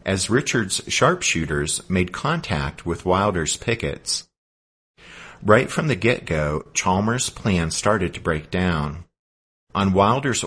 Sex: male